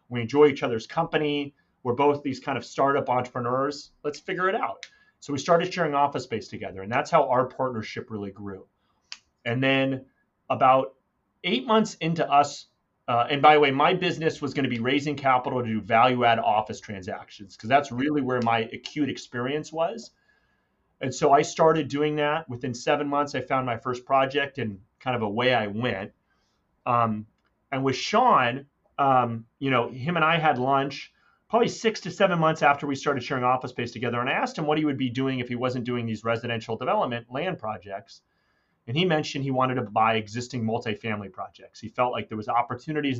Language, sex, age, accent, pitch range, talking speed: English, male, 30-49, American, 120-145 Hz, 195 wpm